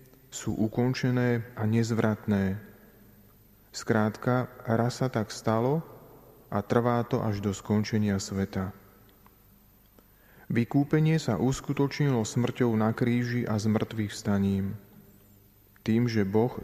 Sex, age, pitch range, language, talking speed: male, 30-49, 100-120 Hz, Slovak, 100 wpm